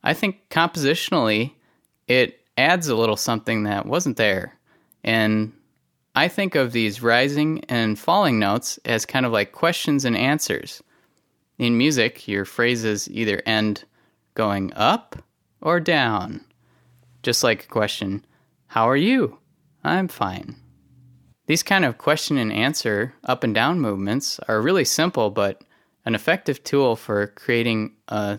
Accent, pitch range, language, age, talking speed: American, 105-145 Hz, English, 20-39, 140 wpm